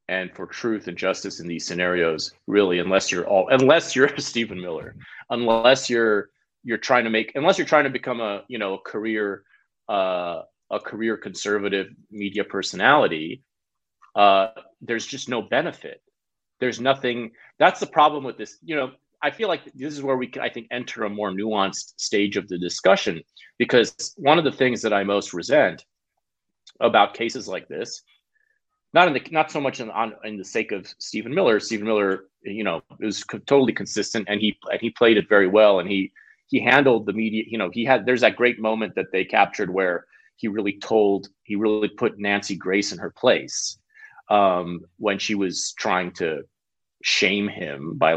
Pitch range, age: 100-135 Hz, 30-49